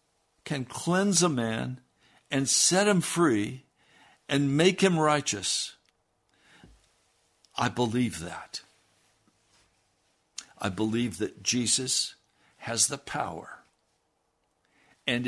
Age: 60-79